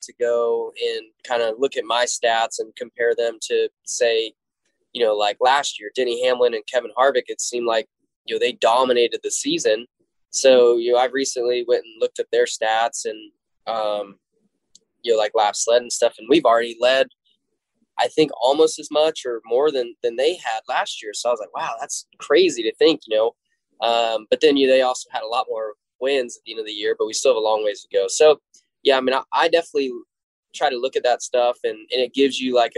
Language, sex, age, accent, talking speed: English, male, 10-29, American, 230 wpm